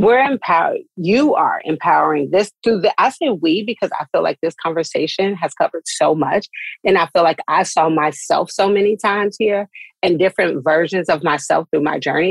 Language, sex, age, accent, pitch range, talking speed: English, female, 40-59, American, 165-205 Hz, 195 wpm